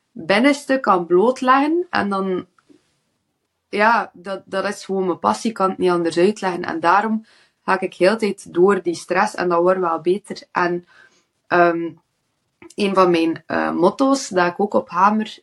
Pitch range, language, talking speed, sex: 170-205 Hz, Dutch, 175 wpm, female